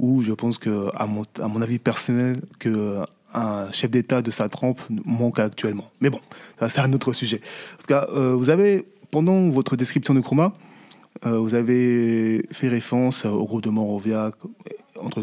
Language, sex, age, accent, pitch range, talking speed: French, male, 20-39, French, 115-140 Hz, 175 wpm